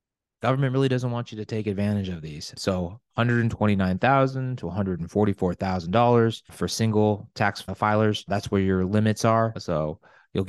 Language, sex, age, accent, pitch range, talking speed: English, male, 30-49, American, 95-120 Hz, 145 wpm